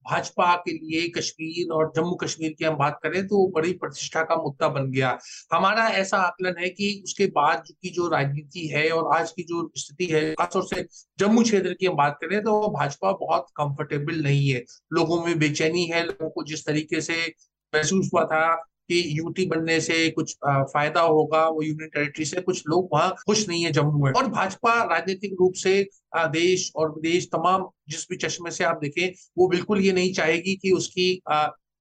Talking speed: 200 wpm